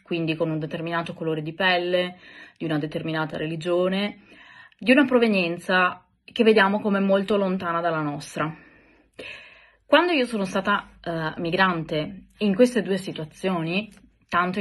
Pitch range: 160-215 Hz